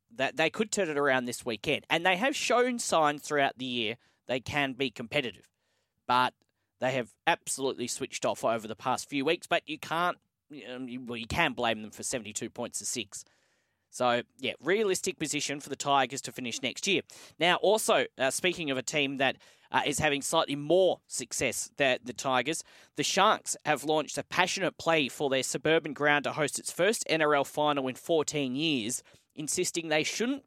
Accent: Australian